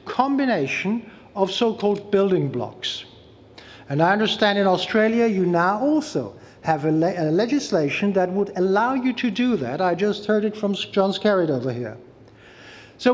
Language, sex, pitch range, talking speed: English, male, 165-235 Hz, 160 wpm